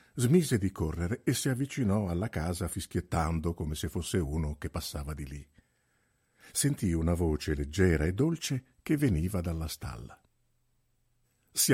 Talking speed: 145 wpm